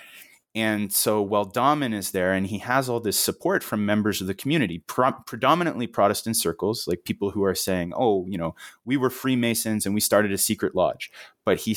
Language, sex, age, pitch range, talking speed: English, male, 30-49, 95-115 Hz, 205 wpm